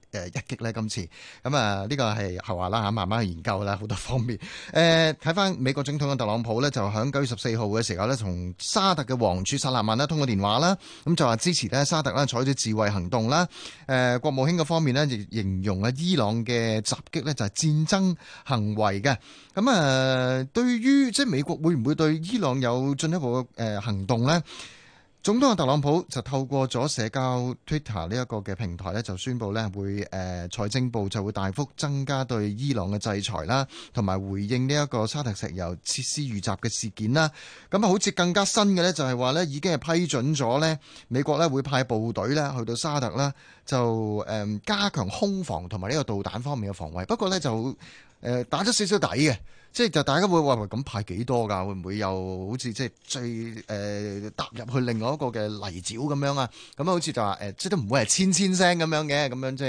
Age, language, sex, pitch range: 30-49, Chinese, male, 105-150 Hz